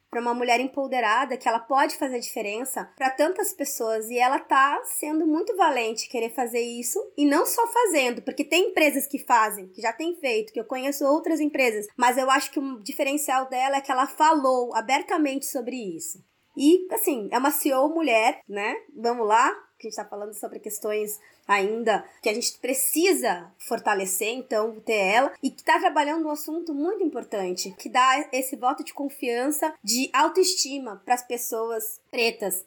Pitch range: 225-295 Hz